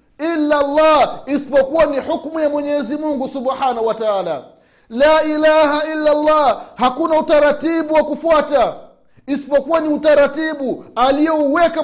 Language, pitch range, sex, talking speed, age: Swahili, 175-290 Hz, male, 110 wpm, 30-49